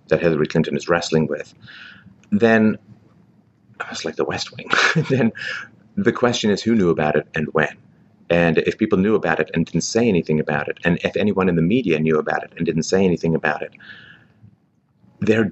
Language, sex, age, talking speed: English, male, 30-49, 195 wpm